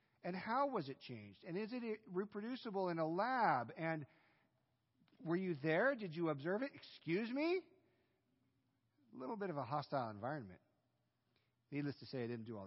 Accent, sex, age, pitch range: American, male, 40-59, 120-155 Hz